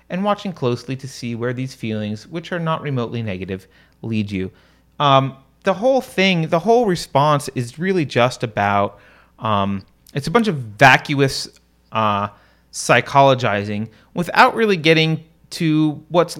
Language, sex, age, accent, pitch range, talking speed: English, male, 30-49, American, 110-165 Hz, 145 wpm